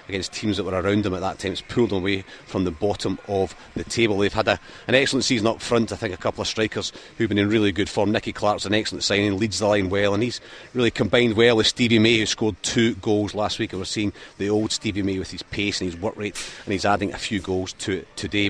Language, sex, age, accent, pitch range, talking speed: English, male, 30-49, British, 100-115 Hz, 275 wpm